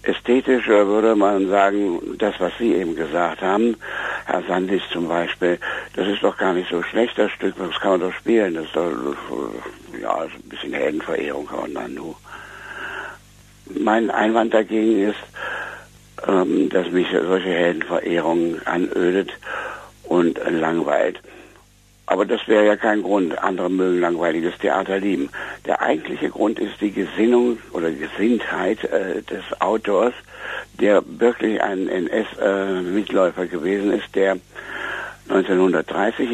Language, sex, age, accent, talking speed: German, male, 60-79, German, 130 wpm